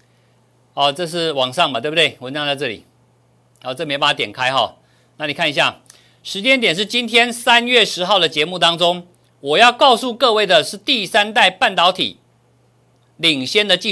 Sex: male